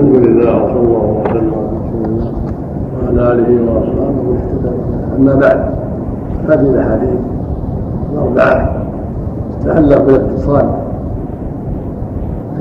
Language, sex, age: Arabic, male, 60-79